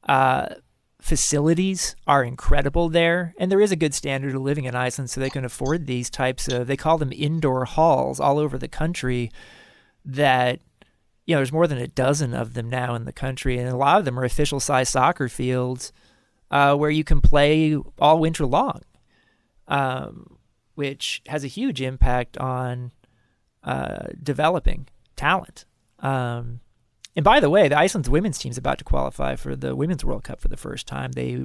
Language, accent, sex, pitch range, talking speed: English, American, male, 125-160 Hz, 185 wpm